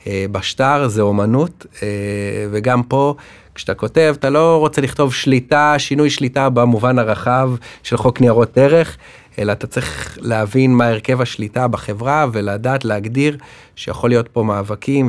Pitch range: 105-130 Hz